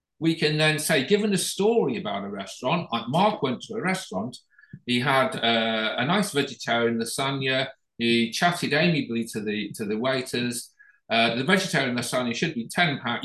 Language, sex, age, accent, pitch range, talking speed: Hebrew, male, 50-69, British, 125-185 Hz, 170 wpm